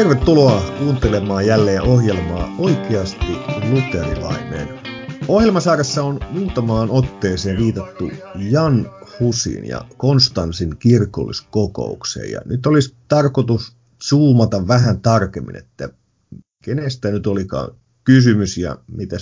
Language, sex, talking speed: Finnish, male, 90 wpm